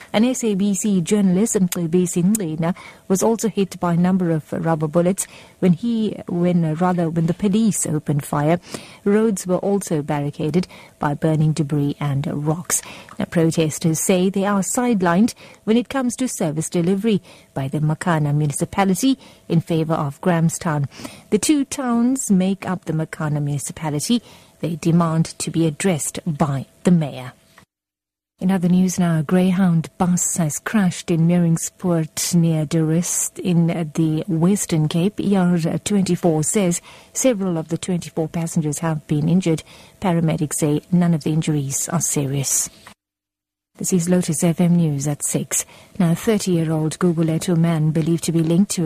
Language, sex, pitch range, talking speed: English, female, 155-185 Hz, 145 wpm